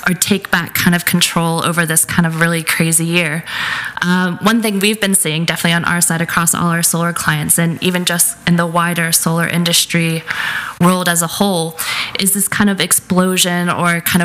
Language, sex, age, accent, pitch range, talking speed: English, female, 20-39, American, 165-185 Hz, 200 wpm